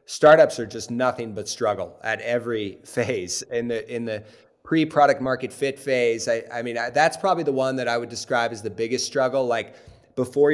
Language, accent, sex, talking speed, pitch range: English, American, male, 200 wpm, 115-135 Hz